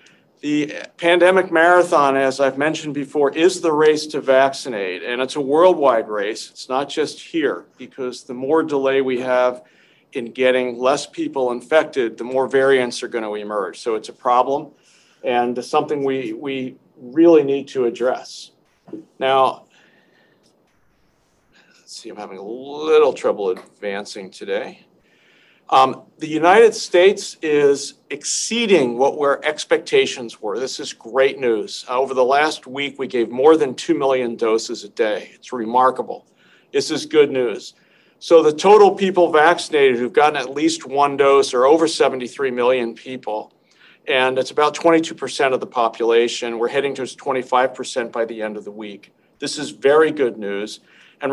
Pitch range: 125-170 Hz